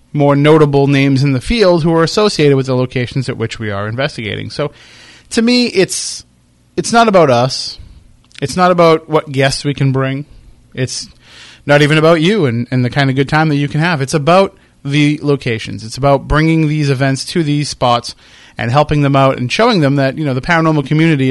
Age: 30-49